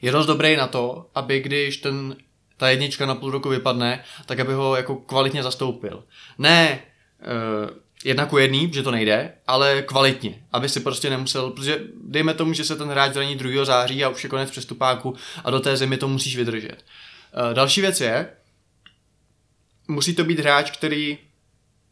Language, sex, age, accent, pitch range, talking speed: Czech, male, 20-39, native, 125-150 Hz, 180 wpm